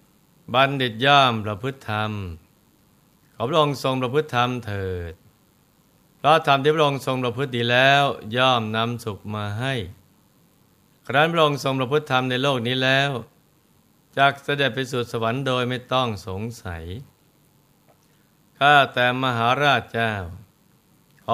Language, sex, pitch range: Thai, male, 110-135 Hz